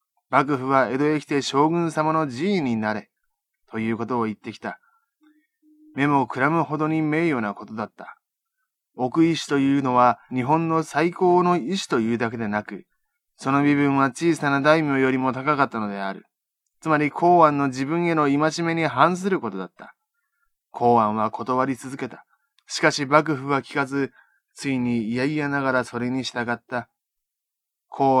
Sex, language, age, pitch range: male, Japanese, 20-39, 125-155 Hz